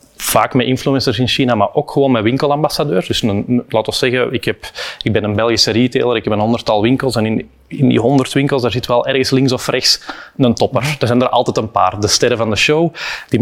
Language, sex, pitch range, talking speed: Dutch, male, 110-130 Hz, 235 wpm